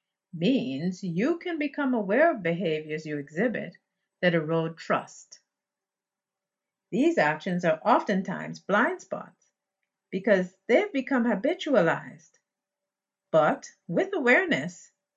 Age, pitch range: 50-69, 170-250 Hz